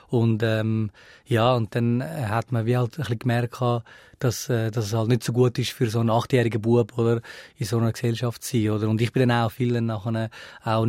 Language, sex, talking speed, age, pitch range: German, male, 220 wpm, 20-39, 120-140 Hz